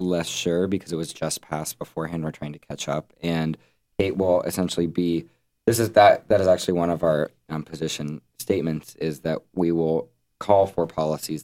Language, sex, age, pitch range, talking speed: English, male, 20-39, 75-85 Hz, 195 wpm